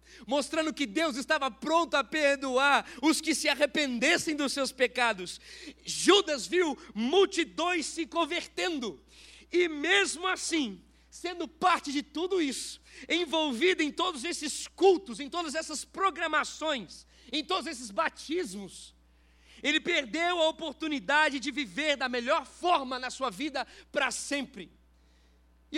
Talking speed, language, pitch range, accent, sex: 130 wpm, Portuguese, 260-315 Hz, Brazilian, male